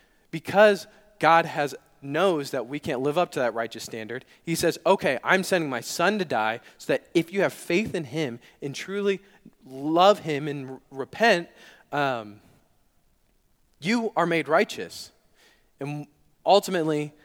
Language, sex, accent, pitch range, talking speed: English, male, American, 120-170 Hz, 155 wpm